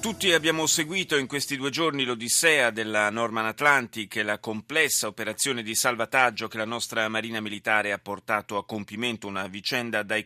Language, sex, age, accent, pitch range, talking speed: Italian, male, 30-49, native, 105-120 Hz, 170 wpm